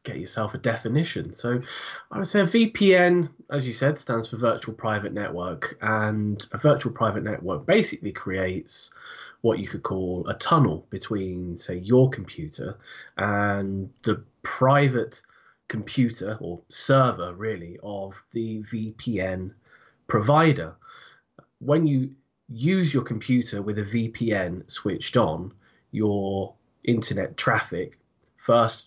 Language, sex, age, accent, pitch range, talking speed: English, male, 20-39, British, 95-130 Hz, 125 wpm